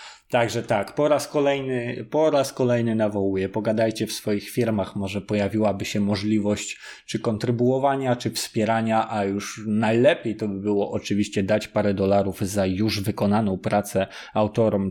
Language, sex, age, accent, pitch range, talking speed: Polish, male, 20-39, native, 105-135 Hz, 145 wpm